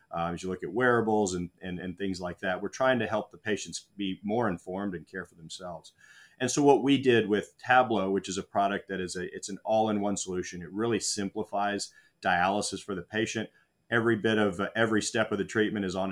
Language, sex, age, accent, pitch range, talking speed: English, male, 40-59, American, 90-105 Hz, 225 wpm